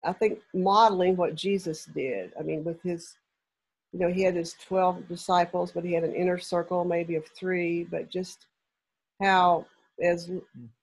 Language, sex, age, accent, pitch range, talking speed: English, female, 60-79, American, 170-195 Hz, 165 wpm